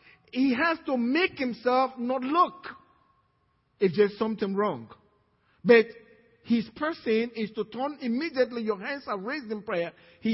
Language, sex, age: English, male, 50-69